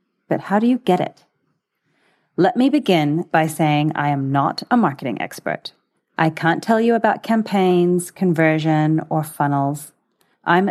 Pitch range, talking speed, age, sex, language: 155-200 Hz, 150 wpm, 30-49, female, English